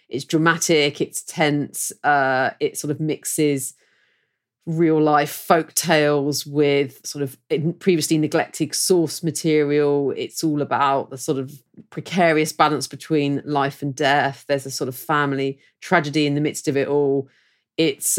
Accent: British